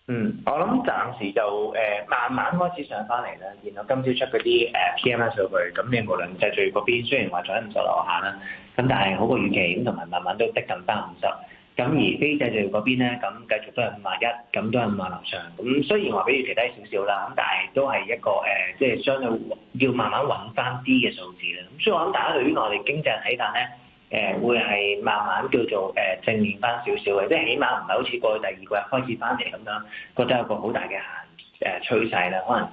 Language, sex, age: Chinese, male, 20-39